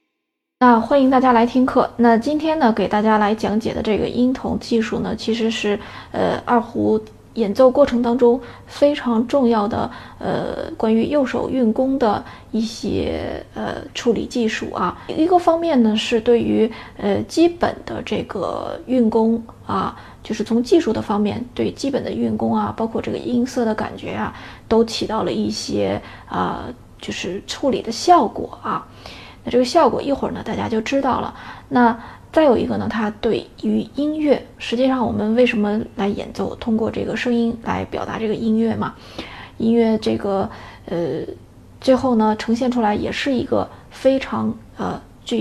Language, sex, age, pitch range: Chinese, female, 20-39, 215-255 Hz